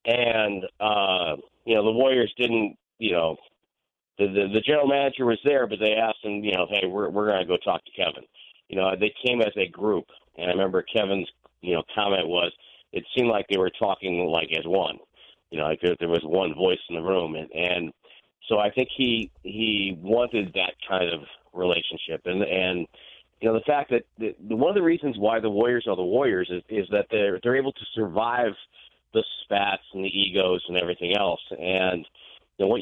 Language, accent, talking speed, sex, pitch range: English, American, 210 wpm, male, 90-115 Hz